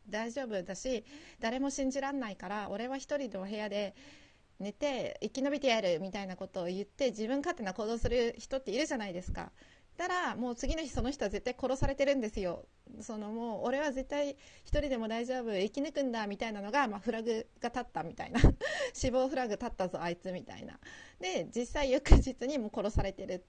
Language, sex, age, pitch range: Japanese, female, 30-49, 210-275 Hz